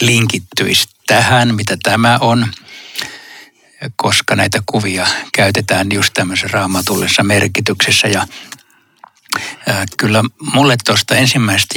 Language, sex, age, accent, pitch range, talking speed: Finnish, male, 60-79, native, 100-125 Hz, 95 wpm